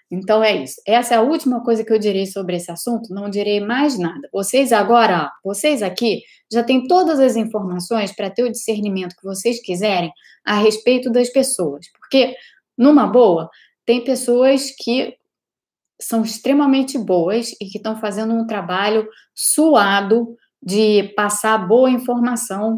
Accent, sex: Brazilian, female